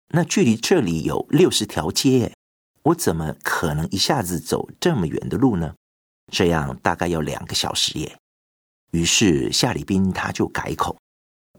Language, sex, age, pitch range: Chinese, male, 50-69, 70-100 Hz